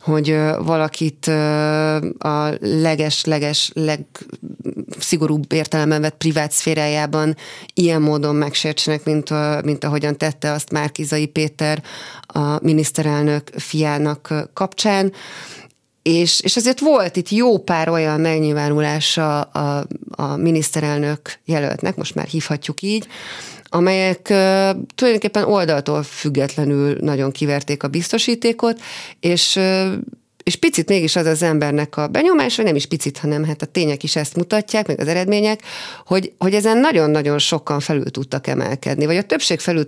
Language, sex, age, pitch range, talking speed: Hungarian, female, 30-49, 150-185 Hz, 130 wpm